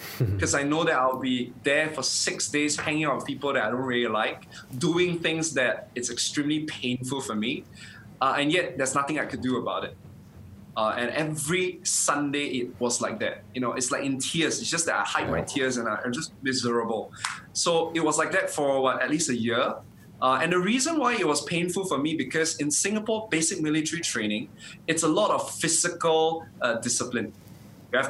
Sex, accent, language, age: male, Malaysian, English, 20-39